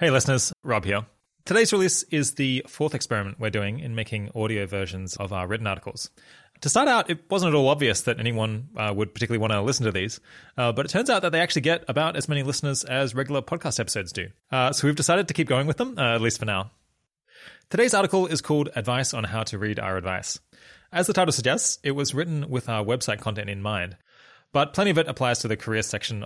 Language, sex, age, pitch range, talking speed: English, male, 20-39, 100-135 Hz, 235 wpm